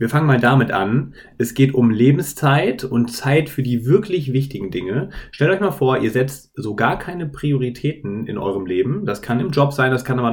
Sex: male